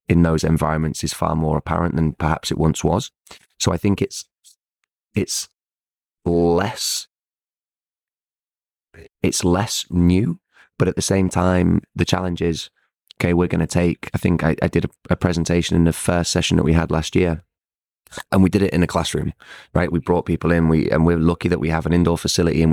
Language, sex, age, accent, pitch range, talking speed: English, male, 20-39, British, 80-90 Hz, 195 wpm